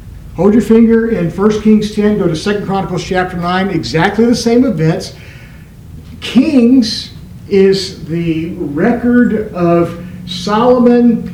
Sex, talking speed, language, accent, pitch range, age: male, 120 wpm, English, American, 165-220 Hz, 50-69